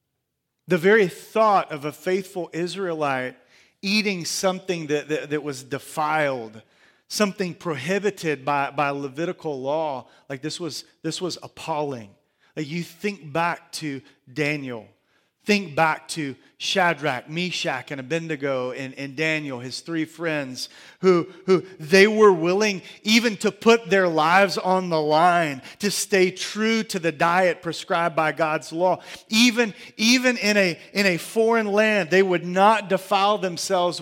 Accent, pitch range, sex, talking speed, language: American, 160-215 Hz, male, 145 wpm, English